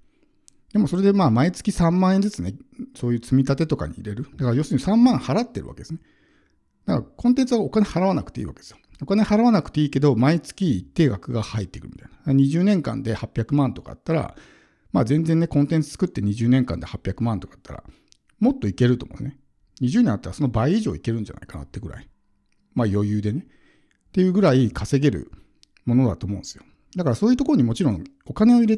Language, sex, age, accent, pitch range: Japanese, male, 50-69, native, 110-160 Hz